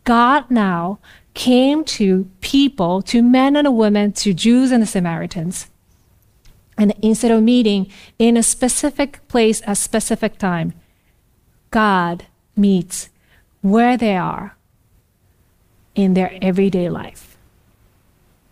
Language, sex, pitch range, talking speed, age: English, female, 185-255 Hz, 115 wpm, 30-49